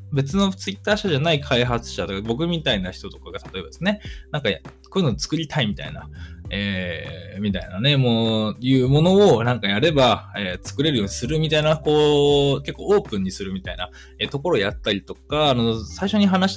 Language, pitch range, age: Japanese, 100-160 Hz, 20-39